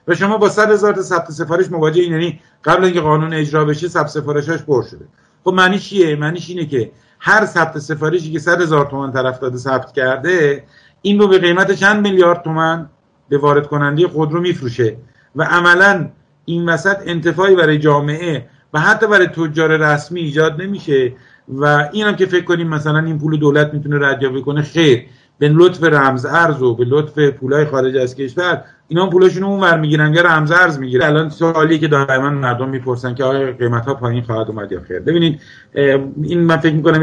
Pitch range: 130-170 Hz